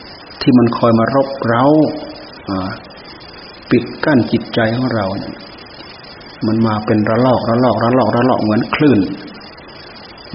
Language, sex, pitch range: Thai, male, 110-130 Hz